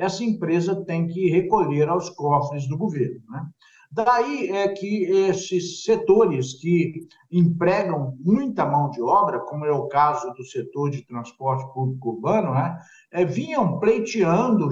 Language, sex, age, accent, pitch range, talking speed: Portuguese, male, 60-79, Brazilian, 150-215 Hz, 140 wpm